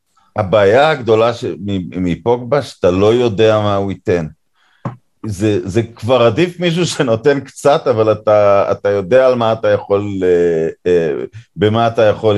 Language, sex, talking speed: Hebrew, male, 135 wpm